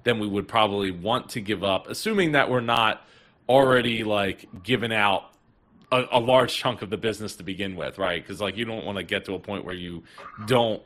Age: 30-49